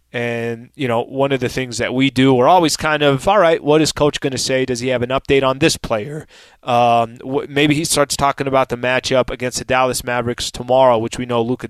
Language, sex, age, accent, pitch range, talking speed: English, male, 20-39, American, 120-145 Hz, 240 wpm